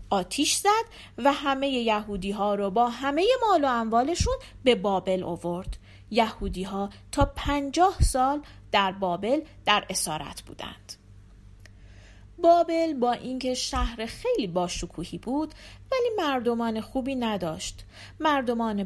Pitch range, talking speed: 180-275 Hz, 110 wpm